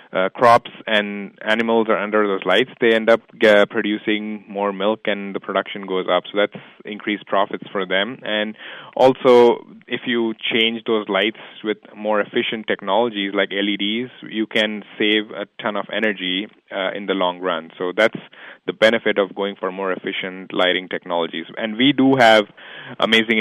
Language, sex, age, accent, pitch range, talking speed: English, male, 20-39, Indian, 100-115 Hz, 170 wpm